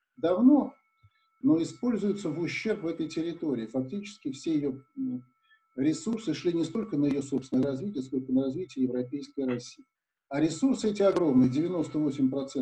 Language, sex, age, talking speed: Russian, male, 50-69, 135 wpm